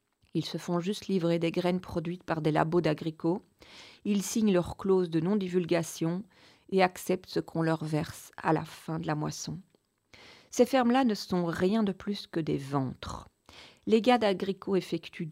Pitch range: 155-185 Hz